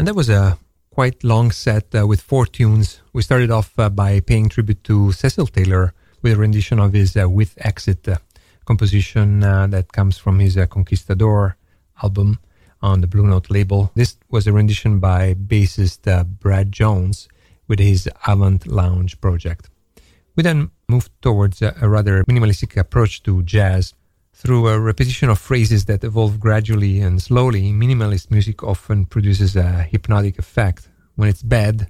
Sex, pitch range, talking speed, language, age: male, 95-110 Hz, 165 wpm, English, 40-59